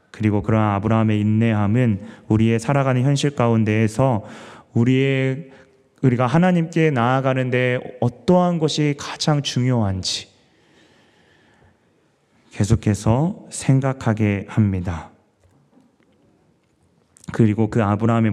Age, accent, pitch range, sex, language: 30-49, native, 105-125 Hz, male, Korean